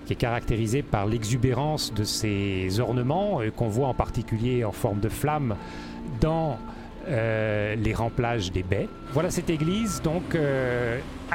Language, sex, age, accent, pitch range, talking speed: French, male, 40-59, French, 105-150 Hz, 150 wpm